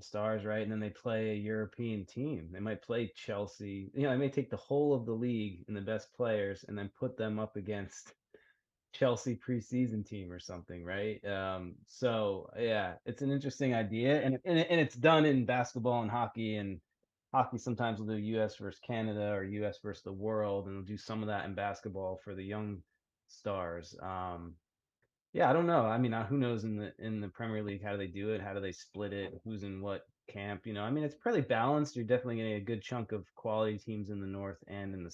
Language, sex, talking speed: English, male, 220 wpm